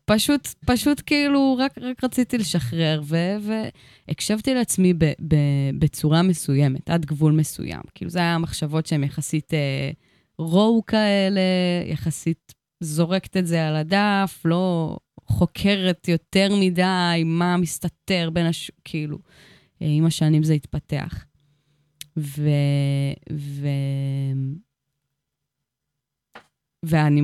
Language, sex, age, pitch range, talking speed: Hebrew, female, 20-39, 150-190 Hz, 110 wpm